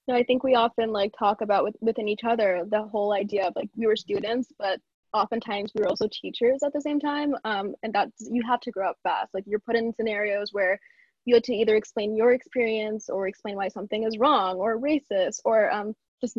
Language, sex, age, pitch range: English, female, 10-29, 205-240 Hz